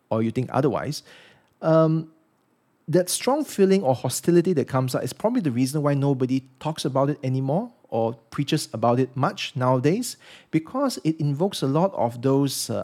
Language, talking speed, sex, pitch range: English, 175 wpm, male, 130-175 Hz